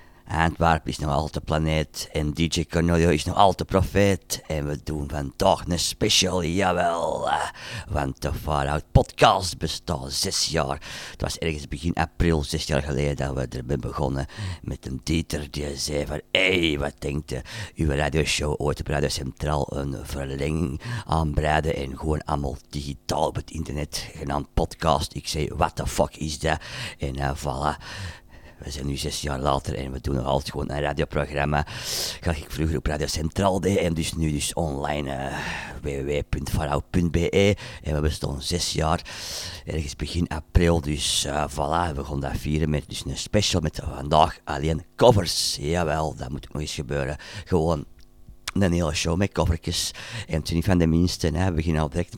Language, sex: Dutch, male